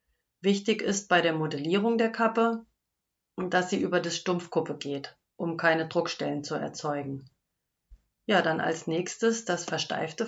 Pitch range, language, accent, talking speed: 165-195 Hz, German, German, 140 wpm